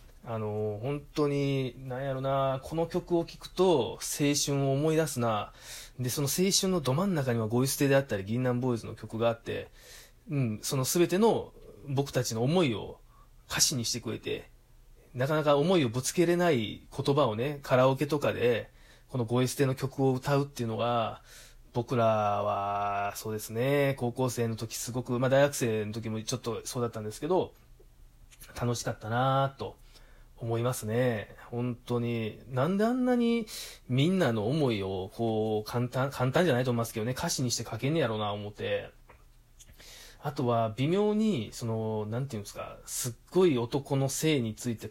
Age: 20-39